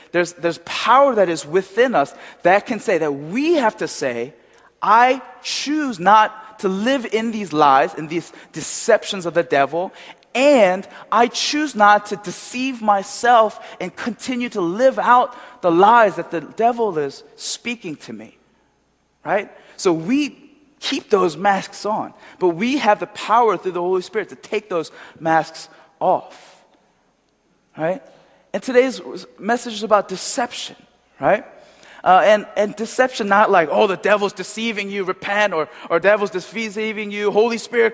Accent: American